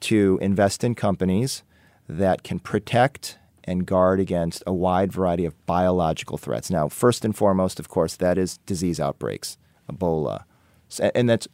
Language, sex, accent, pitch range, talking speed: English, male, American, 85-120 Hz, 150 wpm